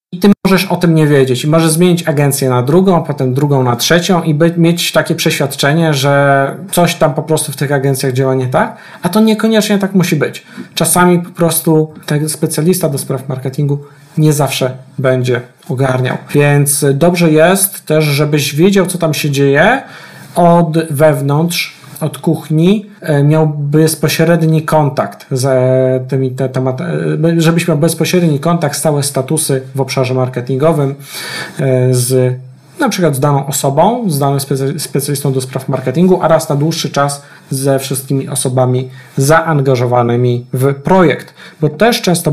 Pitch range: 135-170 Hz